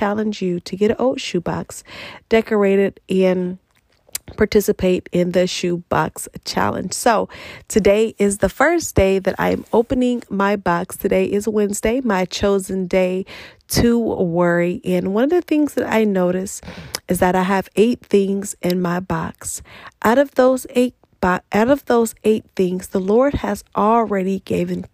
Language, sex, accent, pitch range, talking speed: English, female, American, 190-225 Hz, 155 wpm